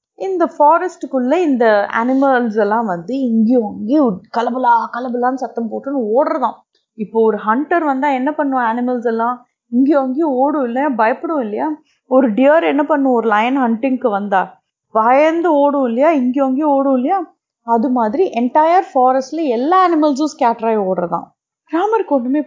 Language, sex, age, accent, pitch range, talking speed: Tamil, female, 30-49, native, 230-300 Hz, 140 wpm